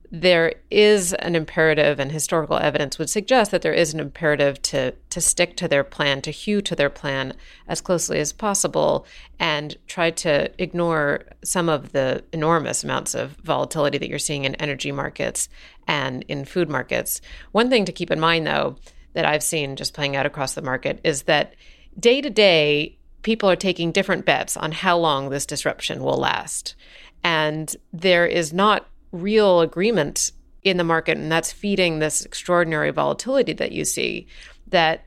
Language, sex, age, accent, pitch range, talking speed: English, female, 40-59, American, 150-180 Hz, 175 wpm